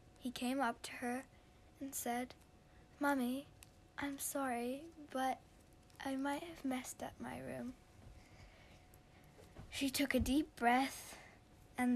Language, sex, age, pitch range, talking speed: English, female, 10-29, 230-260 Hz, 120 wpm